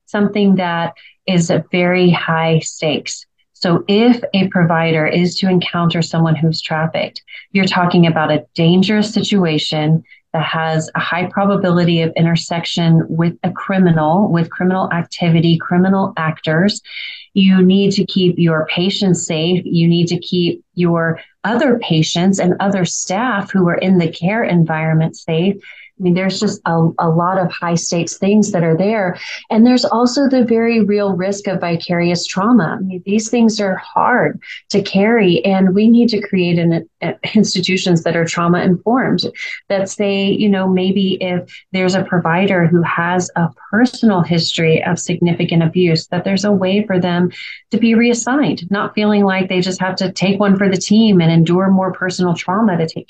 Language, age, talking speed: English, 30-49, 170 wpm